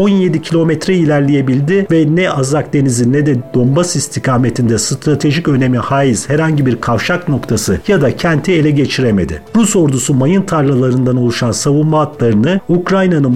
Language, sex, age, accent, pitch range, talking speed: Turkish, male, 50-69, native, 125-165 Hz, 140 wpm